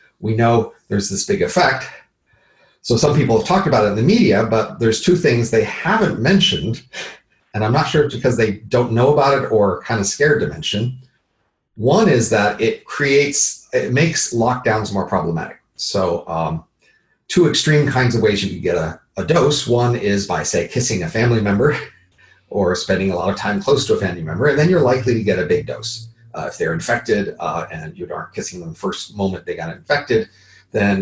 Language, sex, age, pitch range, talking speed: English, male, 40-59, 100-140 Hz, 210 wpm